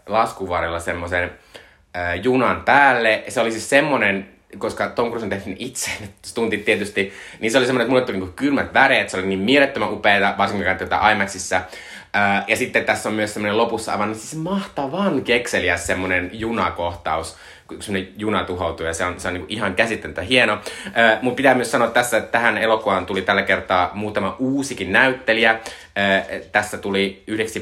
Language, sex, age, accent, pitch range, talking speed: Finnish, male, 20-39, native, 95-120 Hz, 170 wpm